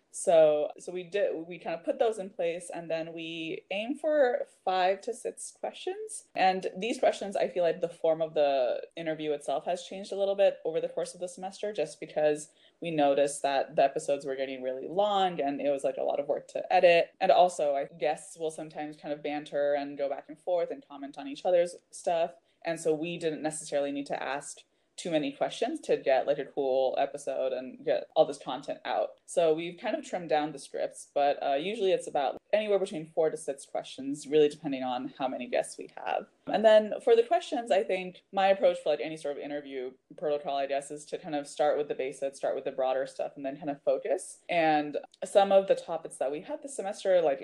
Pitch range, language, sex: 145-195 Hz, English, female